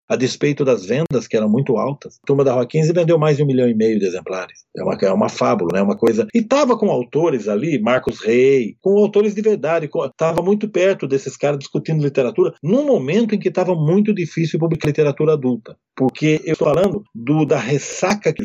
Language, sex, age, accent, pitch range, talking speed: Portuguese, male, 40-59, Brazilian, 145-200 Hz, 220 wpm